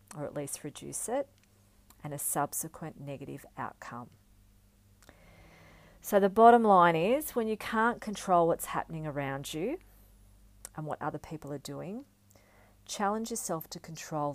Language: English